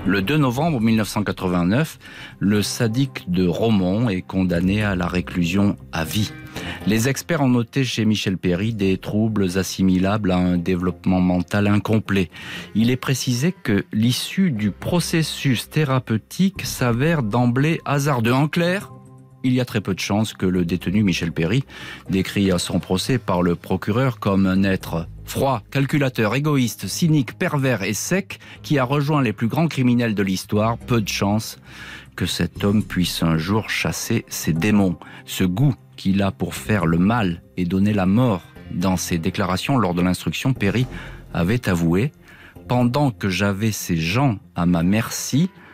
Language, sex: French, male